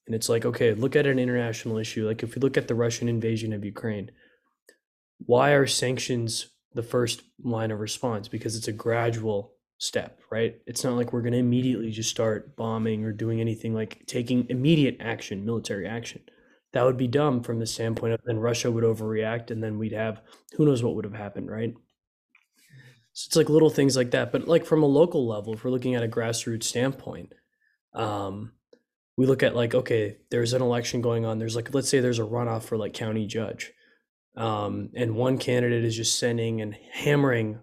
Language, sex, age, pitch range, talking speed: English, male, 20-39, 110-130 Hz, 200 wpm